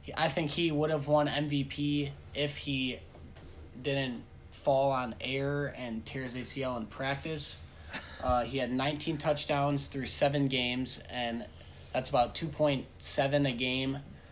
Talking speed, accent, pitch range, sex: 145 wpm, American, 115-135 Hz, male